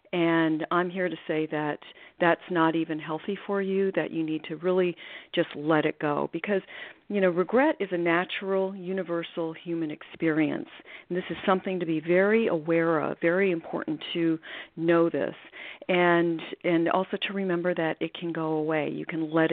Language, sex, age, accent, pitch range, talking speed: English, female, 40-59, American, 160-200 Hz, 180 wpm